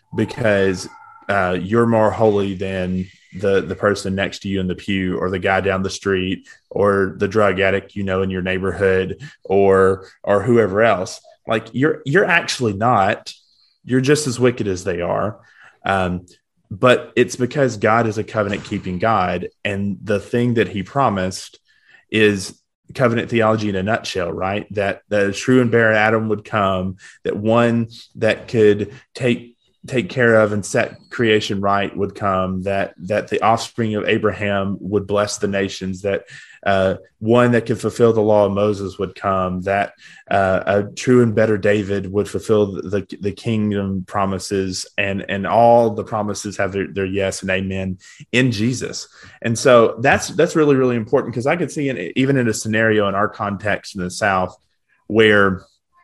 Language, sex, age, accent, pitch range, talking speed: English, male, 20-39, American, 95-115 Hz, 175 wpm